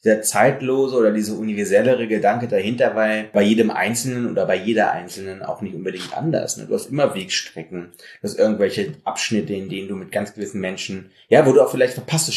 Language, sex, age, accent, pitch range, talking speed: German, male, 30-49, German, 105-140 Hz, 195 wpm